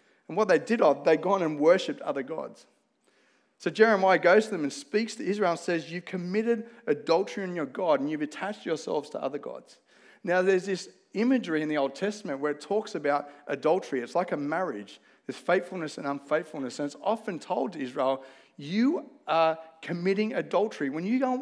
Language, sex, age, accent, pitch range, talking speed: English, male, 40-59, Australian, 155-210 Hz, 195 wpm